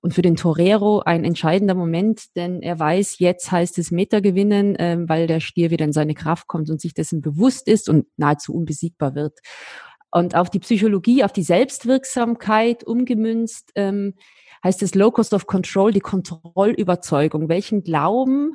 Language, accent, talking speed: German, German, 160 wpm